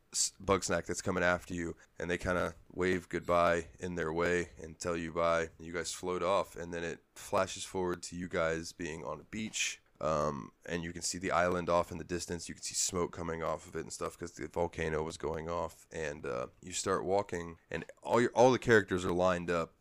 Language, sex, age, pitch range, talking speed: English, male, 20-39, 85-90 Hz, 230 wpm